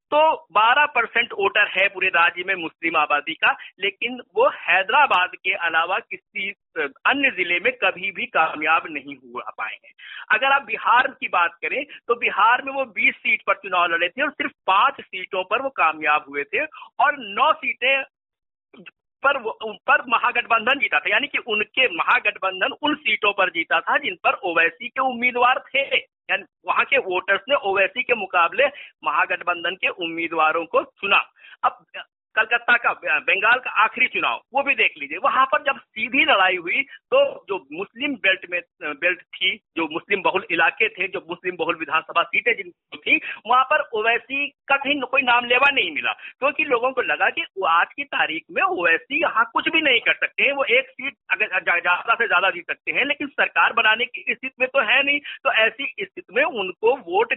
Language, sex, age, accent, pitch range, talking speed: Hindi, male, 50-69, native, 190-275 Hz, 185 wpm